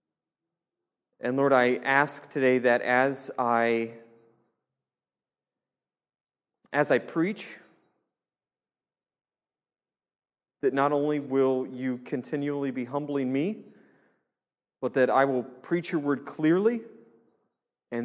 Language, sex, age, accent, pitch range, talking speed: English, male, 30-49, American, 125-195 Hz, 95 wpm